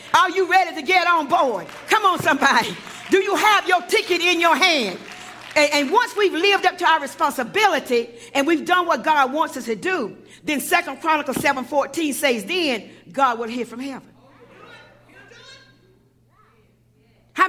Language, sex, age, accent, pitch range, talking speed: English, female, 50-69, American, 275-355 Hz, 165 wpm